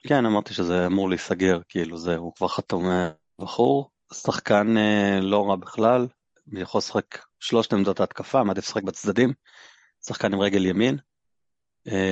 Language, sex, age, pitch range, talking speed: Hebrew, male, 30-49, 95-110 Hz, 150 wpm